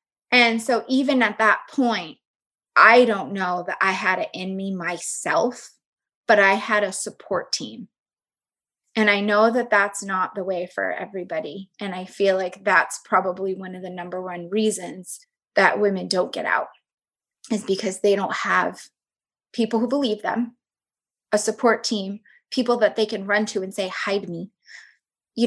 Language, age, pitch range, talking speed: English, 20-39, 185-225 Hz, 170 wpm